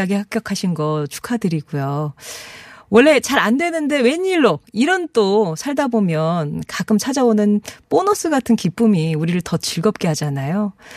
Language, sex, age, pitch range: Korean, female, 40-59, 160-230 Hz